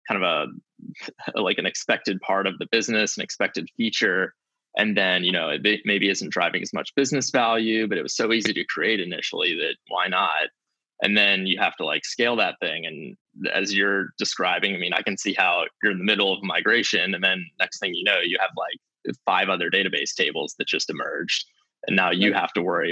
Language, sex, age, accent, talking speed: English, male, 20-39, American, 215 wpm